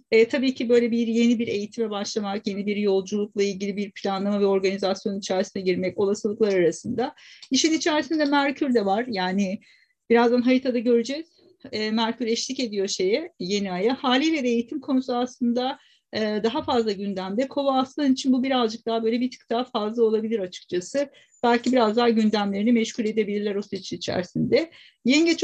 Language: Turkish